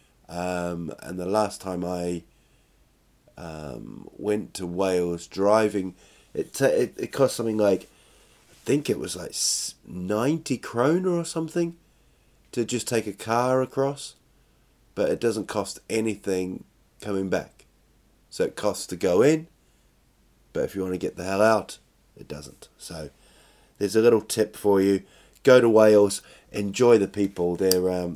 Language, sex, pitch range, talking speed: English, male, 95-130 Hz, 150 wpm